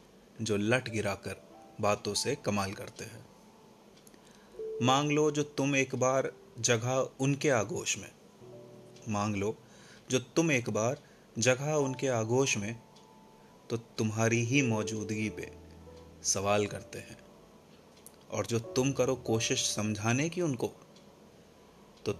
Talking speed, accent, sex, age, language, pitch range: 120 wpm, native, male, 30-49, Hindi, 110-135 Hz